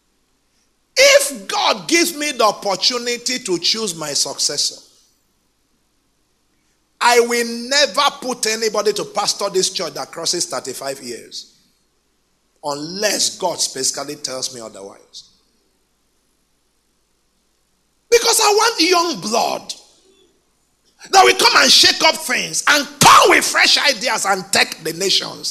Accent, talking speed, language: Nigerian, 120 wpm, English